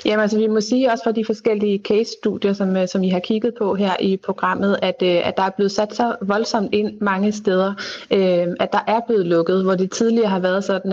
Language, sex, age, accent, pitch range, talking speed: Danish, female, 30-49, native, 185-215 Hz, 225 wpm